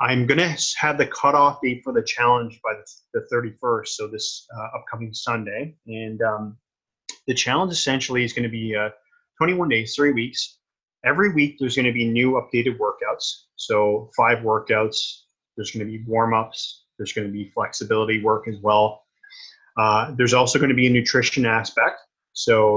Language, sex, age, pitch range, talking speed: English, male, 30-49, 115-145 Hz, 165 wpm